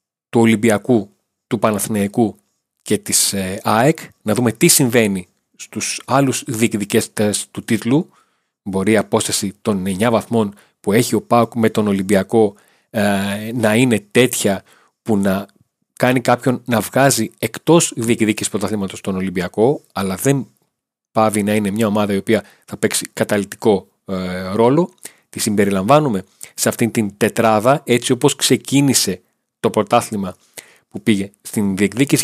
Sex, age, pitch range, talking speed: male, 30-49, 105-125 Hz, 140 wpm